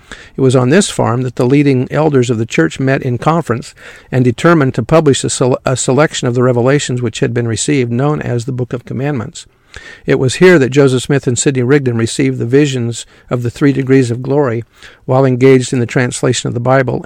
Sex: male